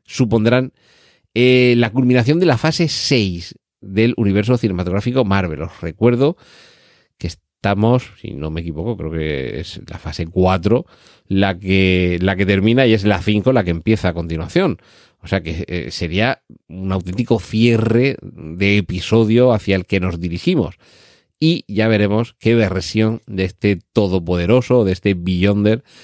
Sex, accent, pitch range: male, Spanish, 90-115 Hz